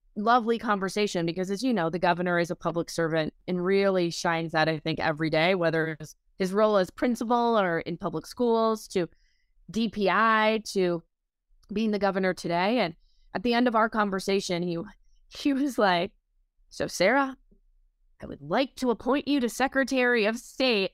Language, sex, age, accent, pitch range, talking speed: English, female, 20-39, American, 190-275 Hz, 170 wpm